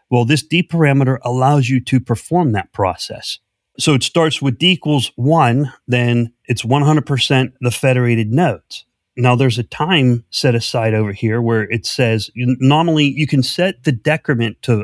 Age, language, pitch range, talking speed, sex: 30-49, English, 110-140 Hz, 165 wpm, male